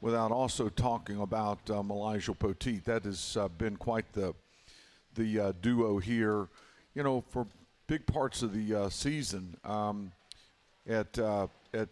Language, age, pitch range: English, 50-69, 100-120 Hz